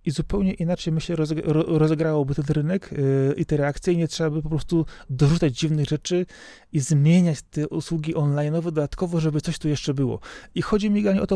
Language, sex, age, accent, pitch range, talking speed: Polish, male, 30-49, native, 135-170 Hz, 195 wpm